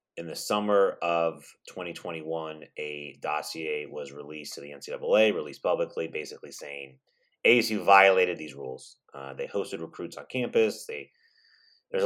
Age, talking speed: 30-49, 140 wpm